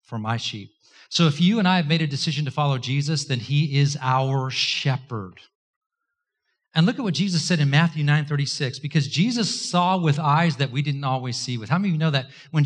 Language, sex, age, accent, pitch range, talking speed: English, male, 40-59, American, 140-190 Hz, 230 wpm